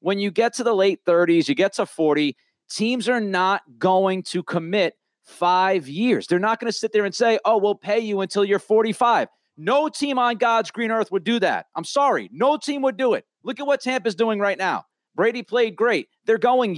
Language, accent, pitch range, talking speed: English, American, 185-230 Hz, 220 wpm